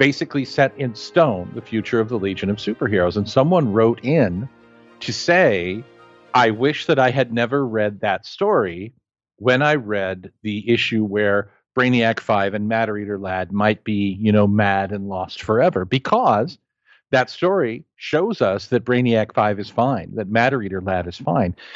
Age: 50-69